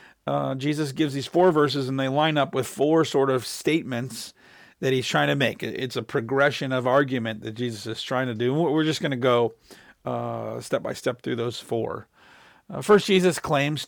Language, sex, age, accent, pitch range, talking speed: English, male, 50-69, American, 125-155 Hz, 200 wpm